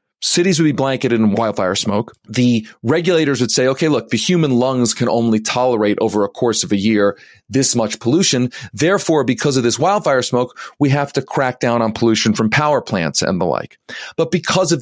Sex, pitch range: male, 115-170 Hz